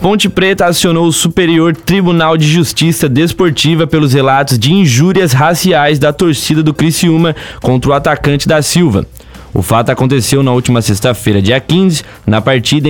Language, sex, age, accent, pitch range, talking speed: Portuguese, male, 20-39, Brazilian, 125-160 Hz, 155 wpm